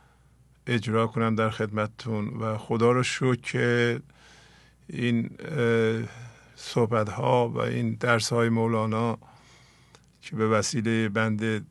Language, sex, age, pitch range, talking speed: English, male, 50-69, 110-125 Hz, 110 wpm